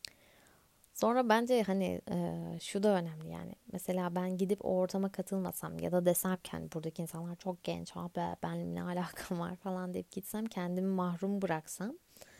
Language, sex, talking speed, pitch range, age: Turkish, female, 150 wpm, 175-200 Hz, 20-39